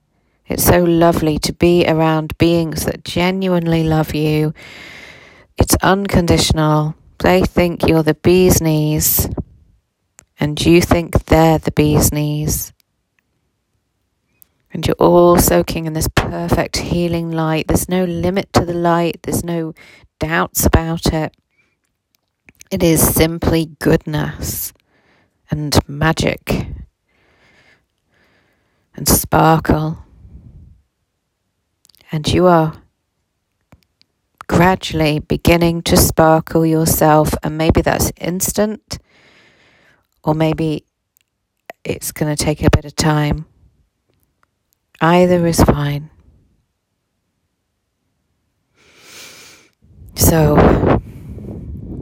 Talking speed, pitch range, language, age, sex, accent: 90 wpm, 110-165 Hz, English, 40-59, female, British